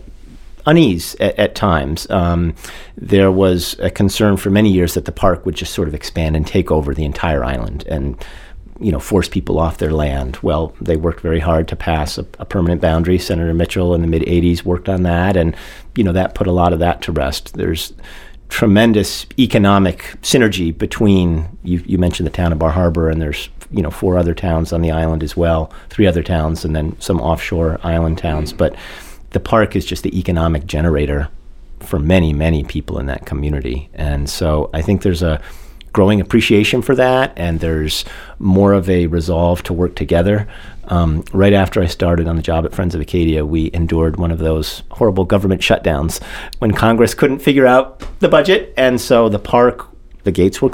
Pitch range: 80-100 Hz